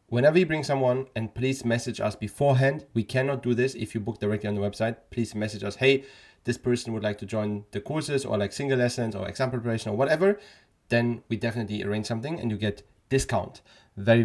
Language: German